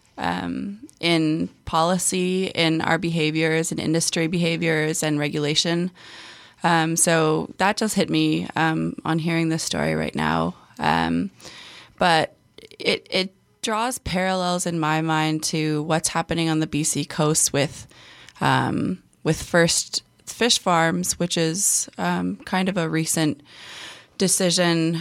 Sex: female